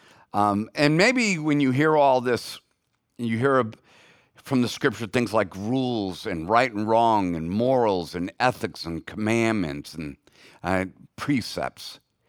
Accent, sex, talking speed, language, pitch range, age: American, male, 135 wpm, English, 110-165 Hz, 50-69